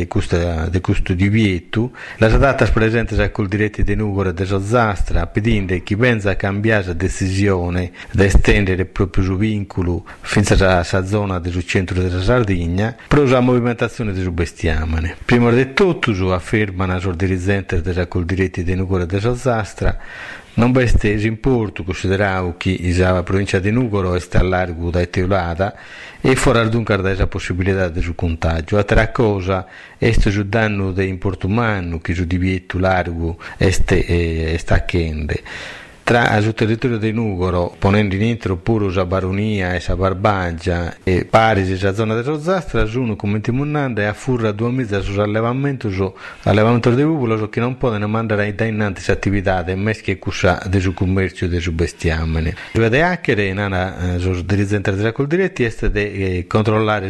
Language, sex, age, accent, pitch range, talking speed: Italian, male, 50-69, native, 90-110 Hz, 165 wpm